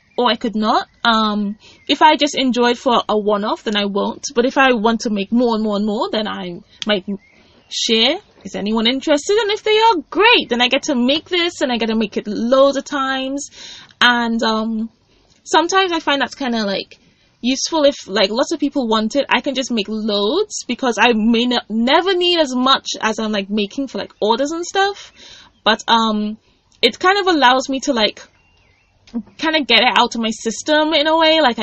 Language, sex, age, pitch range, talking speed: English, female, 10-29, 220-310 Hz, 215 wpm